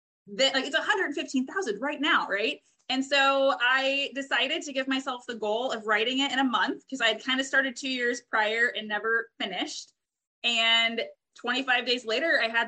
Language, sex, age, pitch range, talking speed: English, female, 20-39, 210-270 Hz, 190 wpm